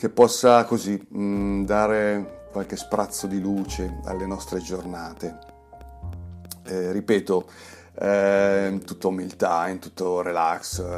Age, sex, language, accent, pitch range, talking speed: 30-49, male, Italian, native, 90-110 Hz, 115 wpm